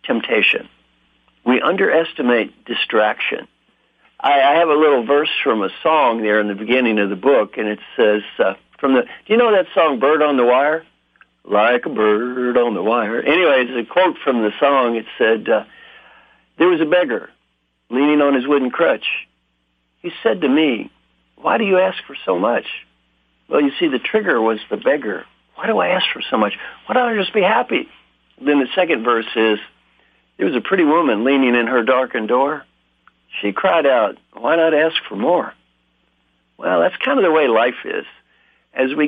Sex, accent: male, American